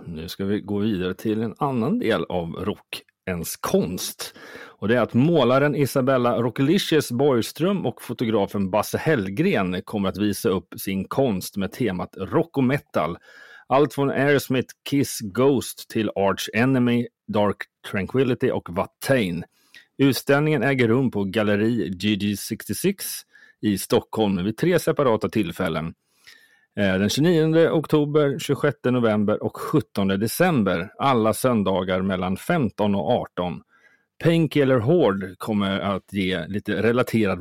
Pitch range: 95-135 Hz